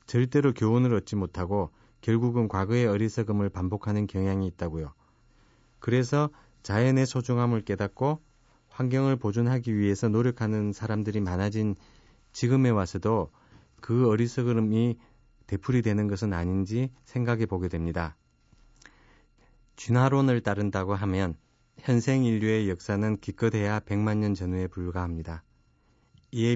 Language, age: Korean, 30-49